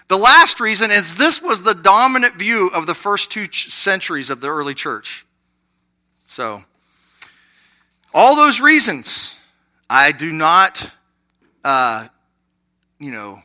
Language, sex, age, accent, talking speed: English, male, 40-59, American, 125 wpm